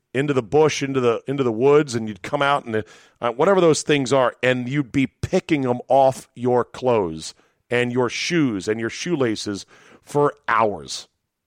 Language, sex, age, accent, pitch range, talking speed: English, male, 40-59, American, 115-140 Hz, 180 wpm